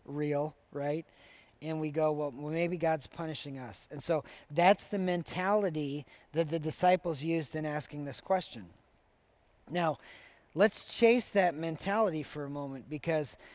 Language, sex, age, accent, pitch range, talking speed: English, male, 40-59, American, 155-185 Hz, 140 wpm